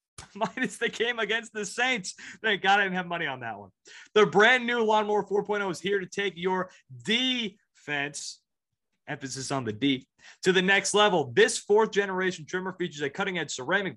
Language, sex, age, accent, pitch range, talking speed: English, male, 30-49, American, 155-210 Hz, 175 wpm